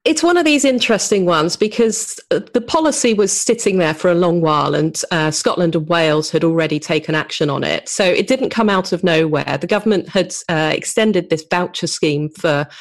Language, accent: English, British